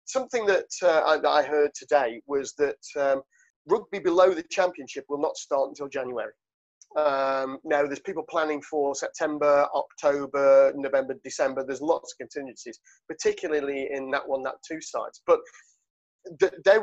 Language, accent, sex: English, British, male